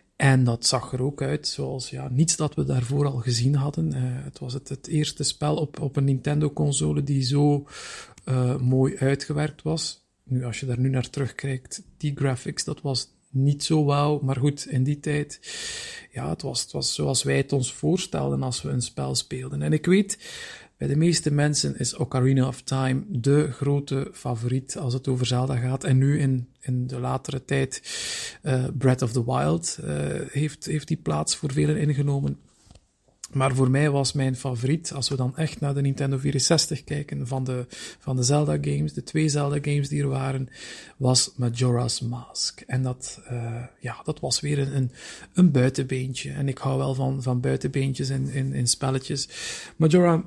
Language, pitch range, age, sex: Dutch, 130-145 Hz, 50-69, male